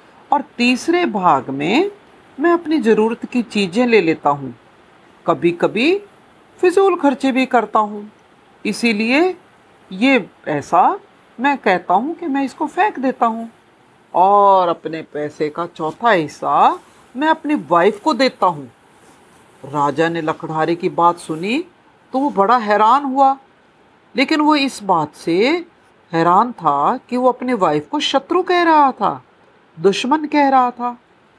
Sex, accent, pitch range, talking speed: female, native, 185-280 Hz, 145 wpm